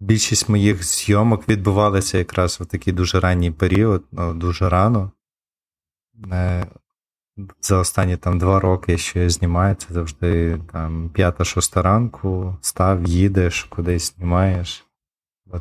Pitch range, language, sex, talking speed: 90-100 Hz, Ukrainian, male, 120 wpm